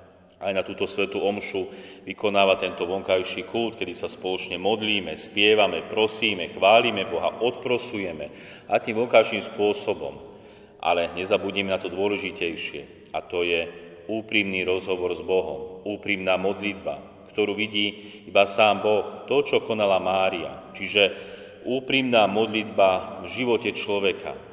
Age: 40-59